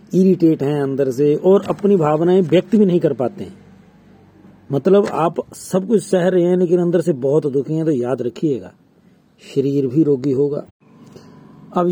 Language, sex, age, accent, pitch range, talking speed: Hindi, male, 40-59, native, 140-185 Hz, 170 wpm